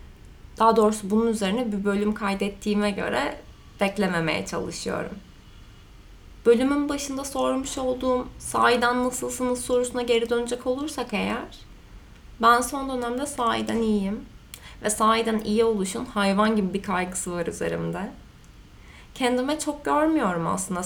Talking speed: 115 wpm